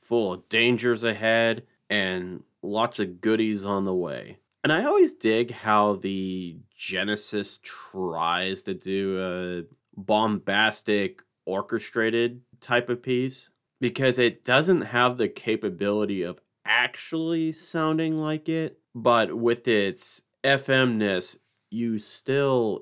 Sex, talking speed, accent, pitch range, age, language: male, 115 wpm, American, 100-120 Hz, 30-49, English